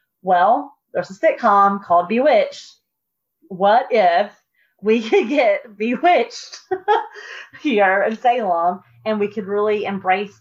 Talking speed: 115 wpm